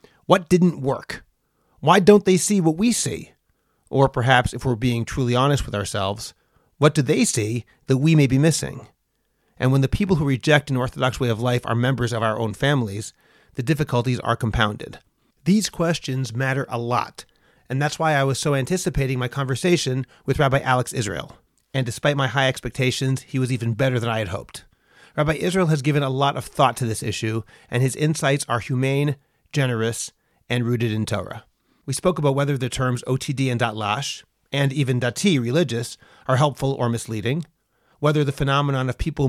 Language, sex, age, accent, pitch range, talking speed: English, male, 30-49, American, 120-150 Hz, 190 wpm